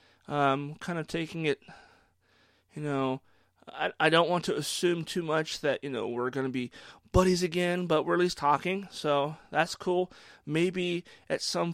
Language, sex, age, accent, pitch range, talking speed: English, male, 30-49, American, 135-175 Hz, 180 wpm